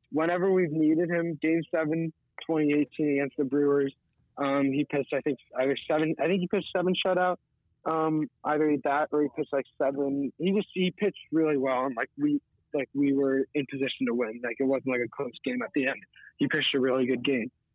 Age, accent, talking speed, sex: 20-39, American, 210 wpm, male